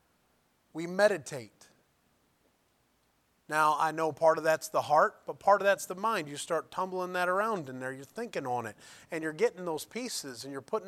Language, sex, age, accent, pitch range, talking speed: English, male, 30-49, American, 155-190 Hz, 195 wpm